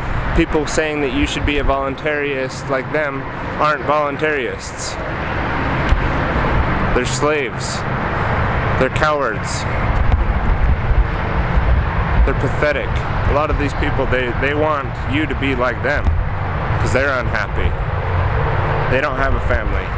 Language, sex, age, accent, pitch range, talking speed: English, male, 30-49, American, 80-130 Hz, 115 wpm